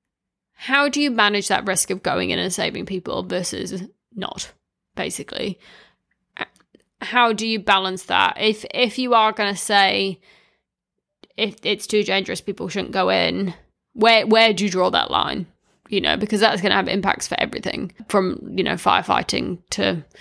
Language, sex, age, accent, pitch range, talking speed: English, female, 20-39, British, 195-230 Hz, 170 wpm